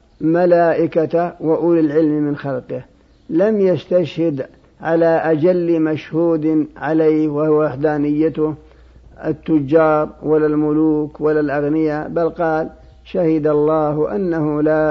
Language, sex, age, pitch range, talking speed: Arabic, male, 50-69, 145-160 Hz, 95 wpm